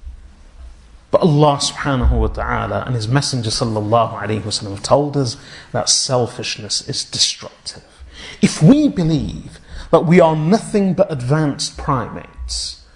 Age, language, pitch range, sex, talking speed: 30-49, English, 120-170 Hz, male, 120 wpm